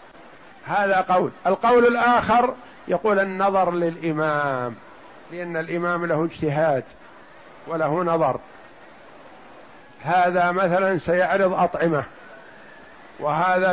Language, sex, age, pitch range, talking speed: Arabic, male, 50-69, 165-195 Hz, 80 wpm